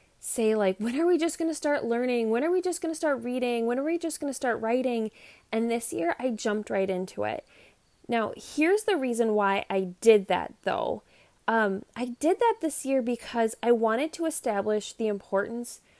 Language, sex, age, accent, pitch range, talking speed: English, female, 20-39, American, 210-285 Hz, 210 wpm